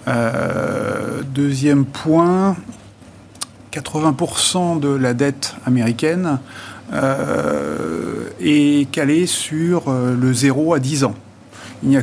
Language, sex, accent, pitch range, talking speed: French, male, French, 120-145 Hz, 105 wpm